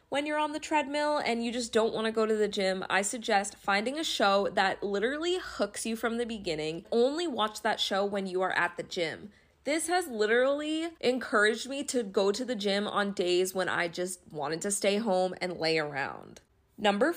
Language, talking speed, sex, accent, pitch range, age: English, 210 wpm, female, American, 200-255 Hz, 20-39